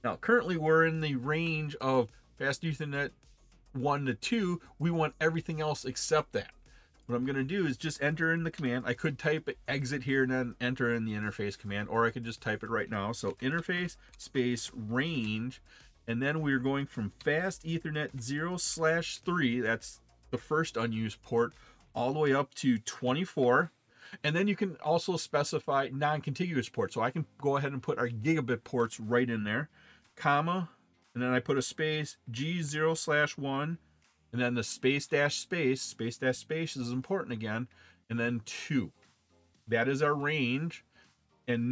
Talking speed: 180 wpm